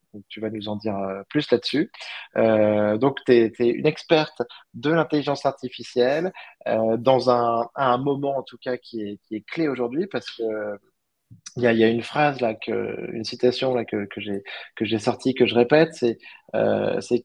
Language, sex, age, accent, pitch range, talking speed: French, male, 20-39, French, 115-135 Hz, 190 wpm